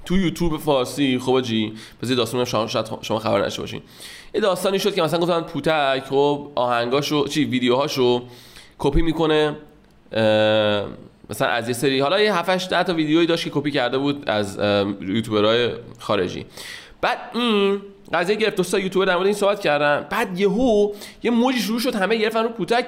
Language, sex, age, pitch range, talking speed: Persian, male, 20-39, 140-195 Hz, 155 wpm